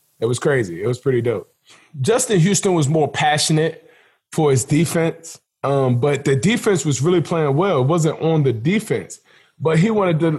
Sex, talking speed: male, 185 wpm